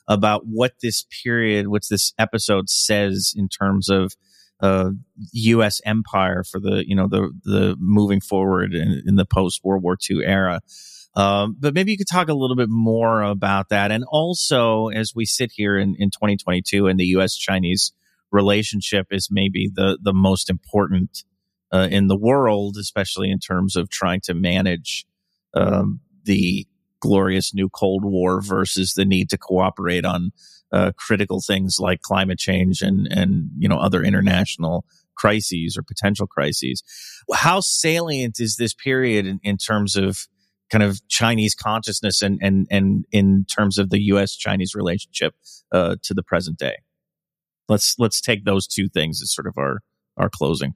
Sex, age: male, 30-49